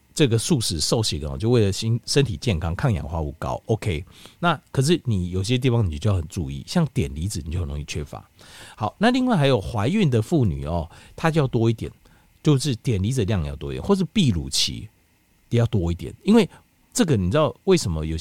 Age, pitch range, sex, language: 50-69, 95-140 Hz, male, Chinese